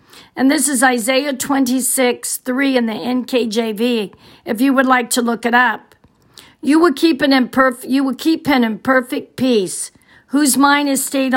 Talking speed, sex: 150 wpm, female